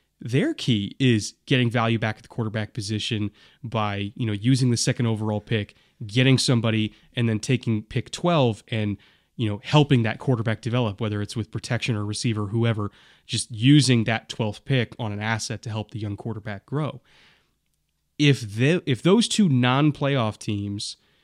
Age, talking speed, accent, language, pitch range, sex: 20-39, 170 wpm, American, English, 110-125 Hz, male